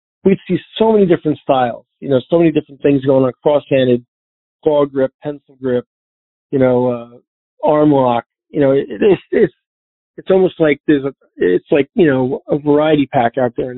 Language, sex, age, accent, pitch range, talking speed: English, male, 40-59, American, 125-145 Hz, 185 wpm